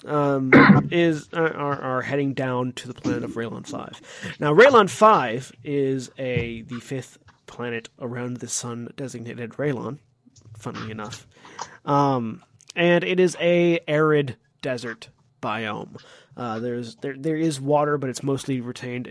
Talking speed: 140 wpm